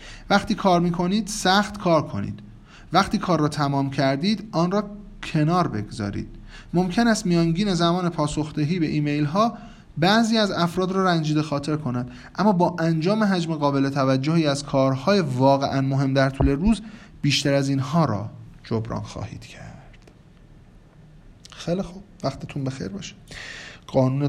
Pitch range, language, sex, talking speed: 120-165 Hz, Persian, male, 140 wpm